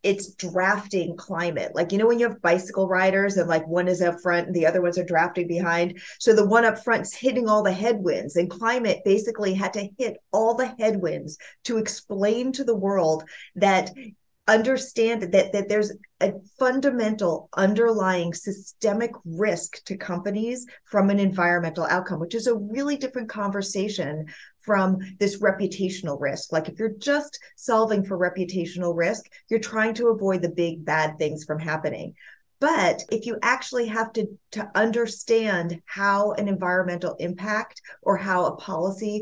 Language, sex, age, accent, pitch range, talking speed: English, female, 30-49, American, 180-225 Hz, 165 wpm